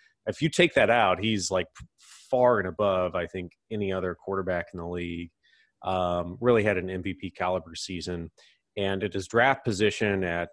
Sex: male